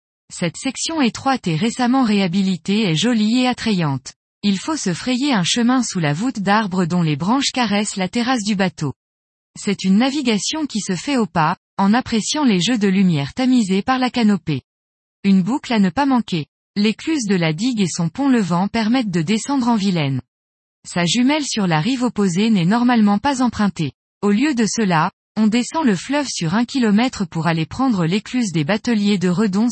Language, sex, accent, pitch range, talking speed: French, female, French, 180-245 Hz, 190 wpm